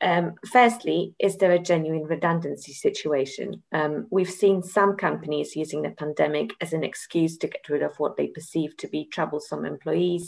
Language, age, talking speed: English, 30-49, 175 wpm